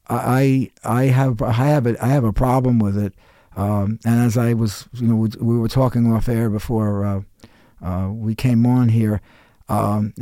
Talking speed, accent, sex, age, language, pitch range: 200 wpm, American, male, 50-69, English, 105-125 Hz